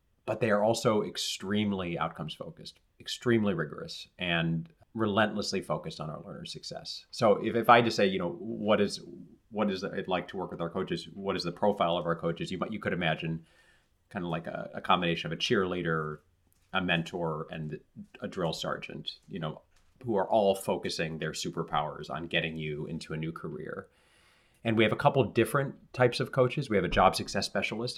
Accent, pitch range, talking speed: American, 85-110 Hz, 195 wpm